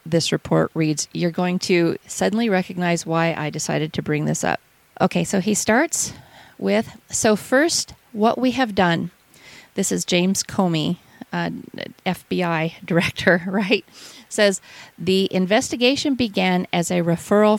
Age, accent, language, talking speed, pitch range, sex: 40-59, American, English, 140 wpm, 170-215 Hz, female